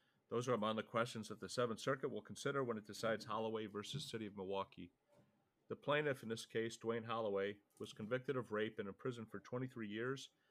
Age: 40-59